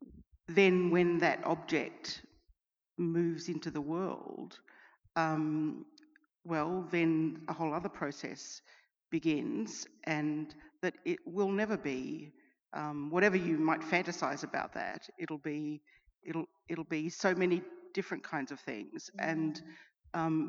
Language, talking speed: English, 125 wpm